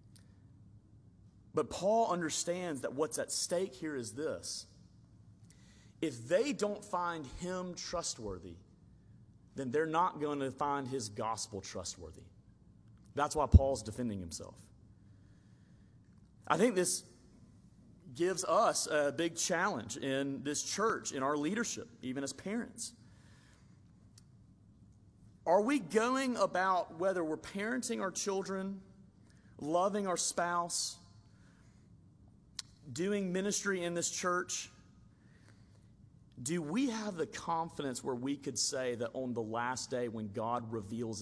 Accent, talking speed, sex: American, 120 wpm, male